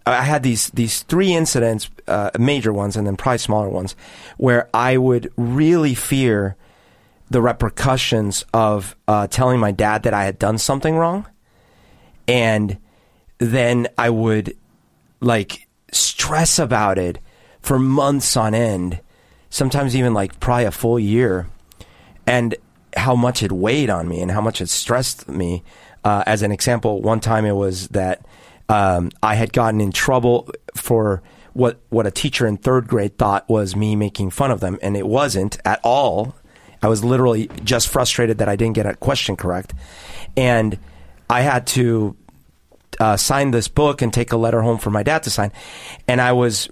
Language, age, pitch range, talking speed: English, 30-49, 100-125 Hz, 170 wpm